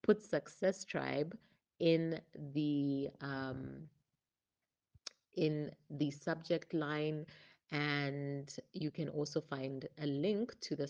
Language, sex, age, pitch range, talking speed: English, female, 30-49, 145-170 Hz, 105 wpm